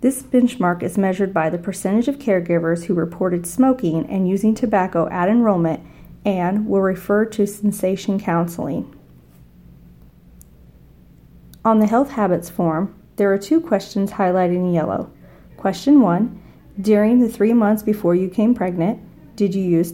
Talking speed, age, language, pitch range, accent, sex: 145 wpm, 40-59, English, 175-210 Hz, American, female